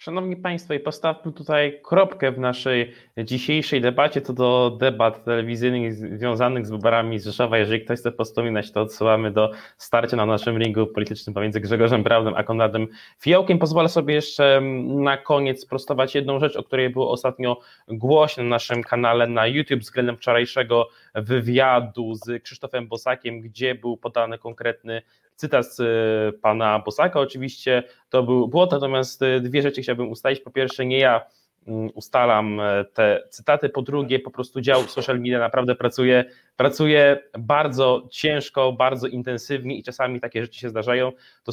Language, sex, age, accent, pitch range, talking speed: Polish, male, 20-39, native, 115-135 Hz, 150 wpm